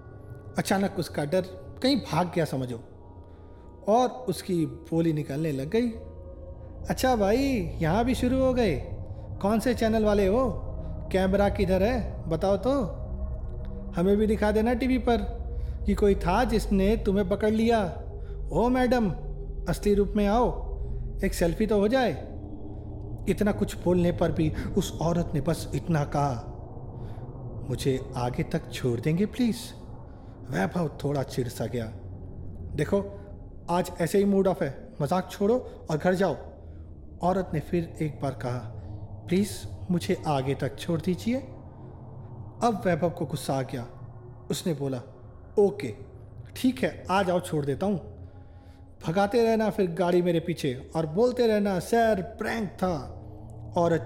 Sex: male